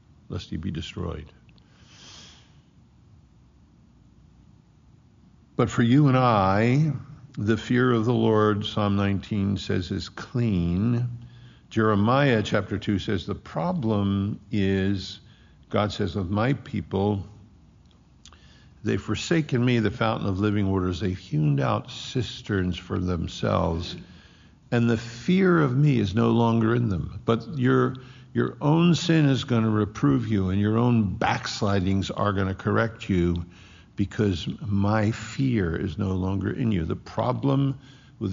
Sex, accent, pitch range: male, American, 95-120 Hz